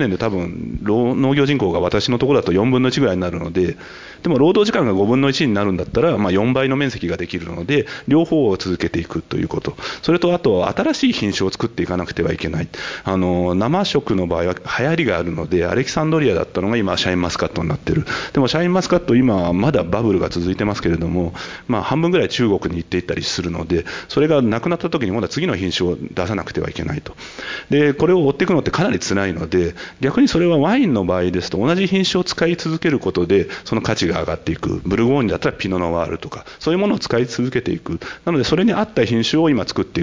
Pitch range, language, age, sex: 90-145 Hz, Japanese, 40-59, male